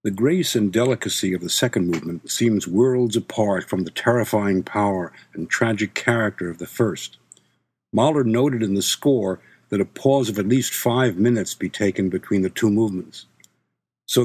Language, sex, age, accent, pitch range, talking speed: English, male, 60-79, American, 100-130 Hz, 175 wpm